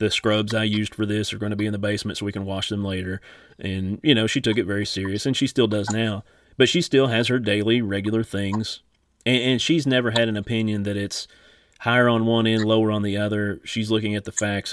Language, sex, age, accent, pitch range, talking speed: English, male, 30-49, American, 105-120 Hz, 250 wpm